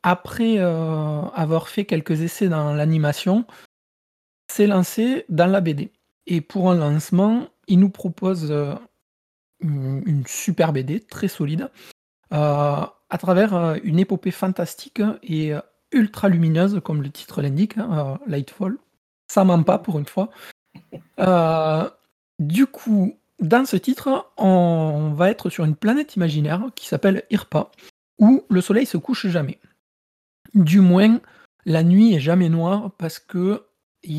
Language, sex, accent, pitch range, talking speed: French, male, French, 155-205 Hz, 145 wpm